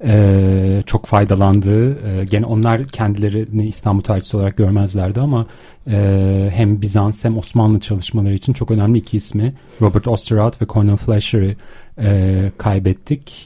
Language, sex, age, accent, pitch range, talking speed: Turkish, male, 40-59, native, 100-115 Hz, 135 wpm